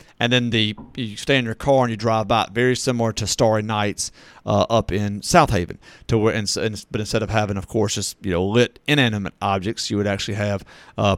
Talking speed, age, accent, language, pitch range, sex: 230 wpm, 40-59, American, English, 110-130 Hz, male